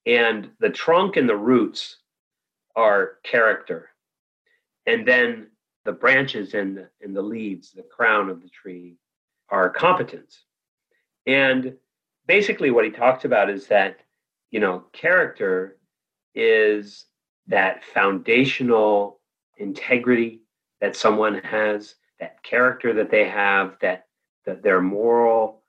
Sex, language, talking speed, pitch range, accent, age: male, English, 115 wpm, 95-130 Hz, American, 40-59